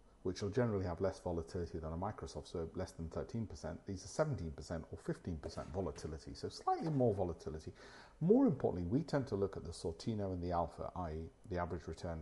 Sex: male